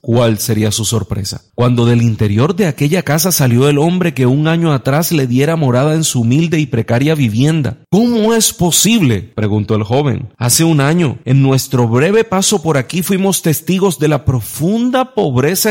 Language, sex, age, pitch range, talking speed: Spanish, male, 40-59, 120-155 Hz, 180 wpm